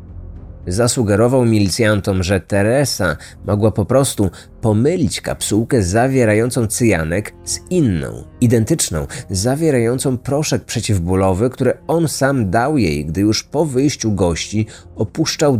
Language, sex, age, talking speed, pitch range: Polish, male, 30-49, 110 wpm, 95-130 Hz